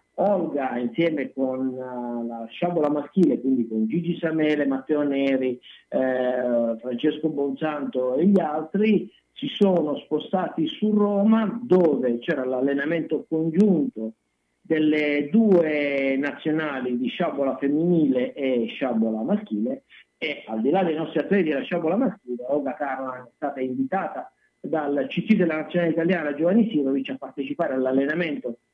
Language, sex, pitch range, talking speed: Italian, male, 135-185 Hz, 125 wpm